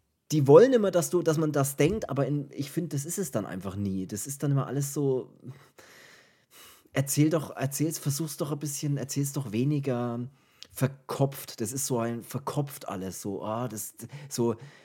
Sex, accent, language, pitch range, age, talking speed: male, German, German, 105-140 Hz, 30-49, 185 wpm